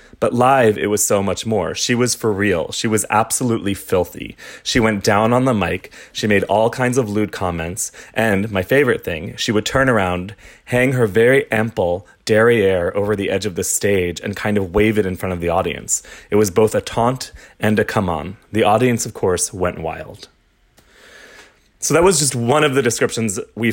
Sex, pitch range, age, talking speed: male, 95-115 Hz, 30-49, 205 wpm